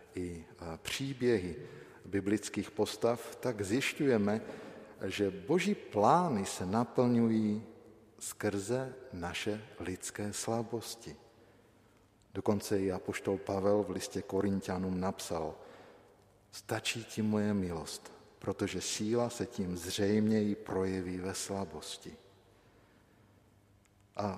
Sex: male